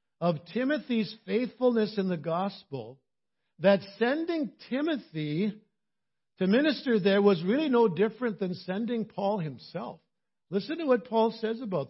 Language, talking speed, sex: English, 130 wpm, male